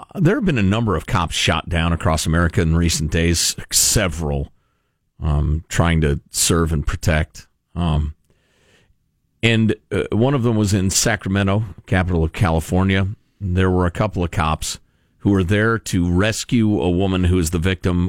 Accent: American